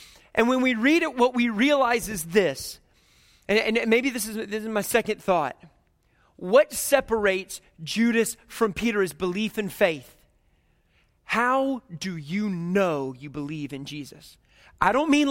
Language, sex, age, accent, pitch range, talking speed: English, male, 30-49, American, 180-245 Hz, 155 wpm